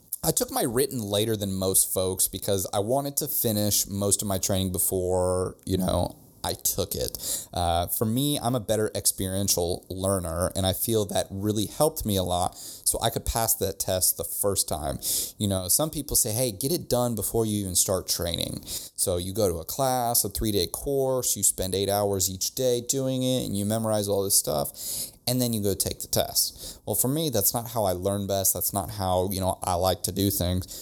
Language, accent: English, American